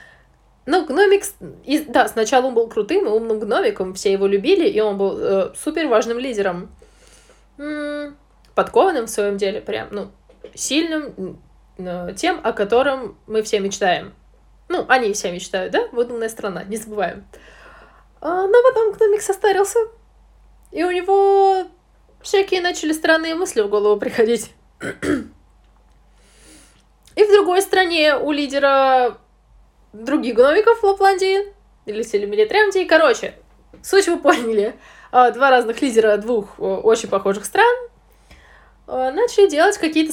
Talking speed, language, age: 130 wpm, Russian, 20-39